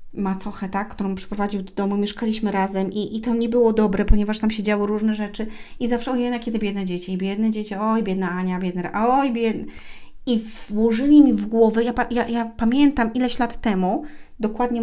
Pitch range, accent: 195-240 Hz, native